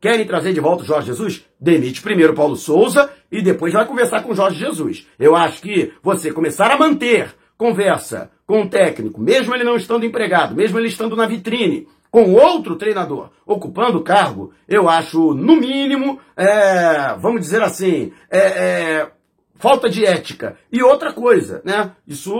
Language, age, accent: Portuguese, 50-69, Brazilian